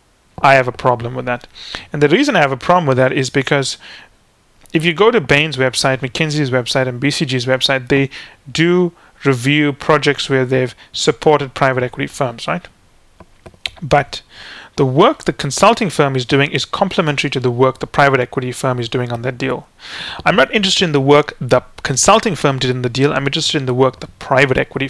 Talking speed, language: 200 wpm, English